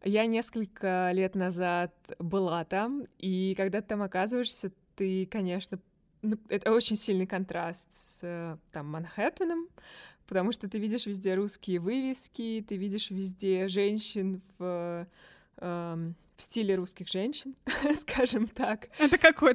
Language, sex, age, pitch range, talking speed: Russian, female, 20-39, 185-235 Hz, 125 wpm